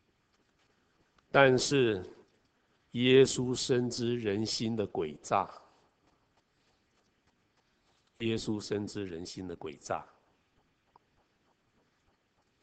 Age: 60-79